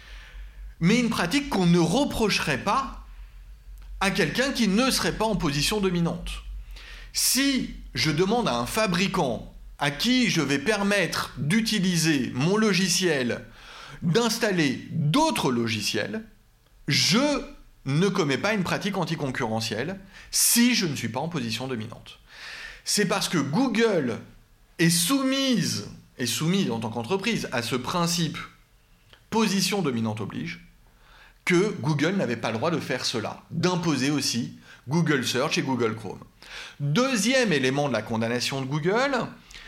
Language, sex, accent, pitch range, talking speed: French, male, French, 135-220 Hz, 135 wpm